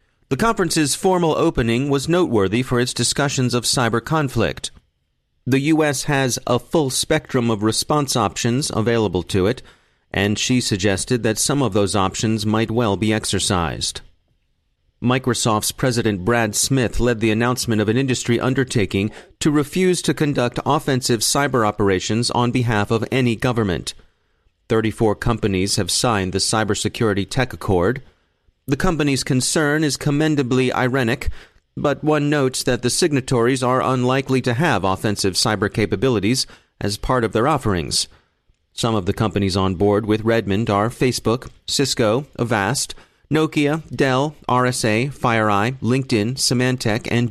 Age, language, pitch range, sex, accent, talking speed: 40-59, English, 105-135 Hz, male, American, 140 wpm